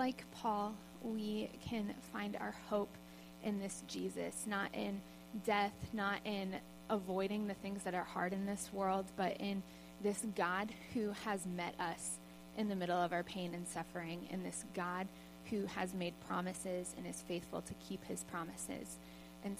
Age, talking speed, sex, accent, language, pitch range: 20-39, 170 wpm, female, American, English, 155-200 Hz